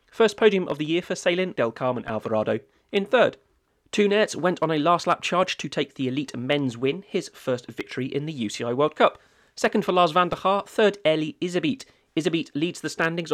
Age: 30-49